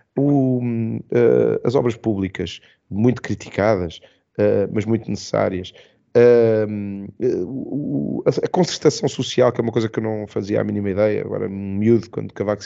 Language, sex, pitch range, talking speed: Portuguese, male, 105-140 Hz, 170 wpm